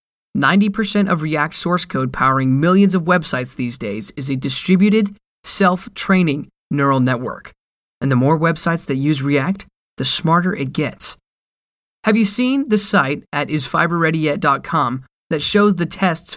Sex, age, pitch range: male, 20-39, 145-195 Hz